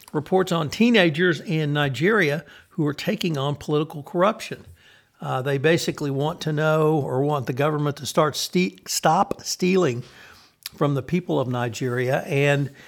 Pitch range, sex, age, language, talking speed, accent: 130-160 Hz, male, 60-79, English, 150 wpm, American